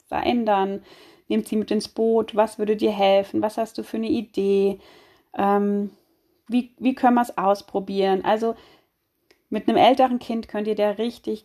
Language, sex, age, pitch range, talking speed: German, female, 30-49, 195-270 Hz, 170 wpm